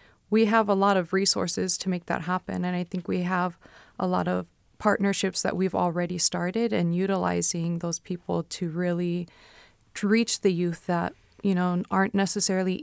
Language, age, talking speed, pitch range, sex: English, 20-39, 180 wpm, 175-195 Hz, female